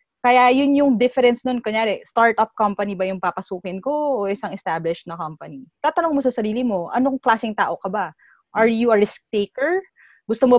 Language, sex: English, female